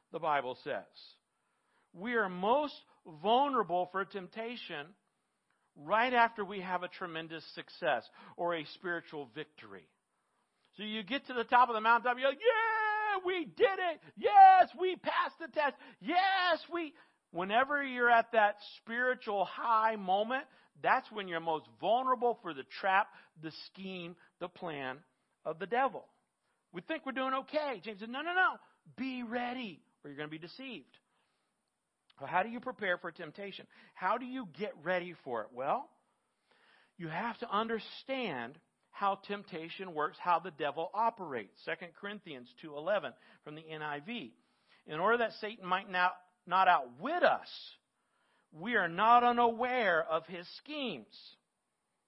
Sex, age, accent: male, 50-69, American